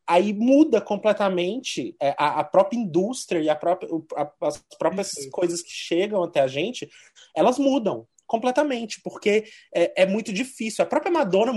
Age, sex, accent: 20-39, male, Brazilian